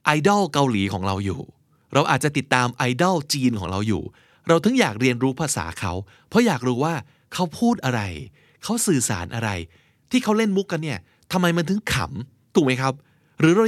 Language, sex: Thai, male